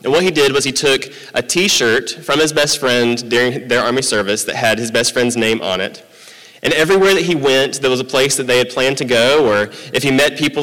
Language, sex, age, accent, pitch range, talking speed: English, male, 30-49, American, 120-140 Hz, 255 wpm